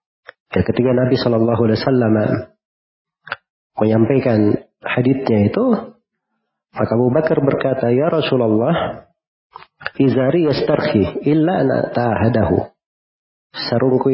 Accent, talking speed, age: native, 75 wpm, 40-59